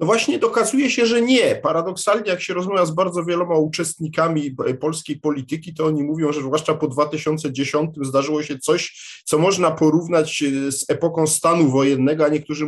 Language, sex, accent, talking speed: Polish, male, native, 165 wpm